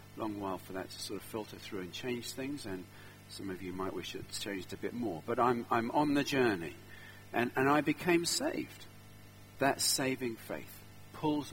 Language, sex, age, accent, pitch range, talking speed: English, male, 50-69, British, 105-170 Hz, 200 wpm